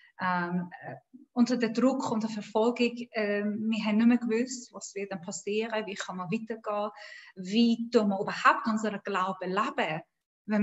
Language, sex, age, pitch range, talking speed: German, female, 30-49, 205-240 Hz, 175 wpm